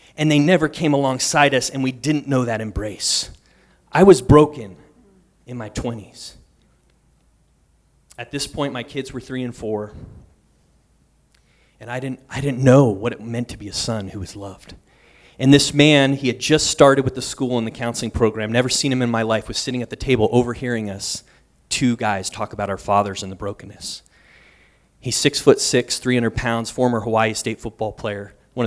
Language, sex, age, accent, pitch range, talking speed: English, male, 30-49, American, 105-130 Hz, 190 wpm